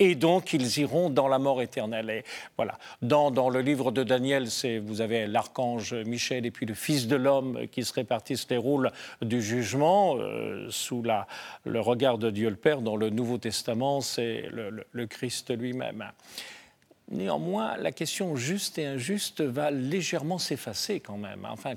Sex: male